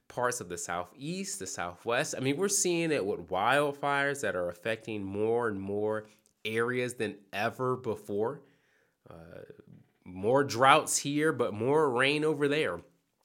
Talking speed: 145 wpm